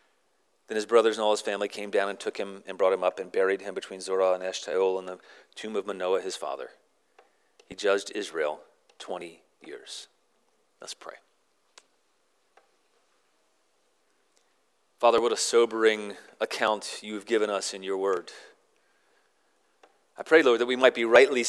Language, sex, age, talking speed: English, male, 40-59, 155 wpm